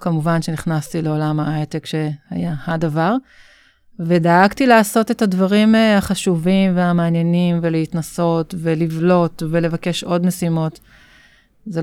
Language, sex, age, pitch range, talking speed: Hebrew, female, 30-49, 155-185 Hz, 90 wpm